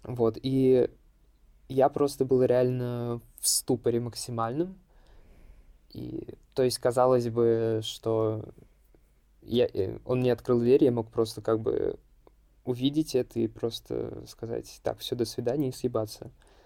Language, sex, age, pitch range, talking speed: Russian, male, 20-39, 115-135 Hz, 125 wpm